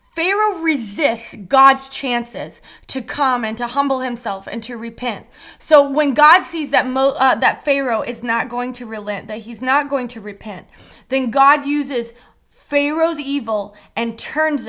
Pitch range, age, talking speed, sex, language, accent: 210-255 Hz, 20-39, 160 wpm, female, English, American